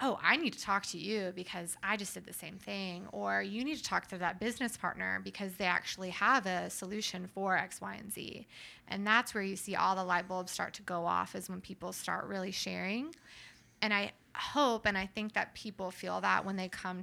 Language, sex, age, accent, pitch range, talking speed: English, female, 20-39, American, 180-215 Hz, 235 wpm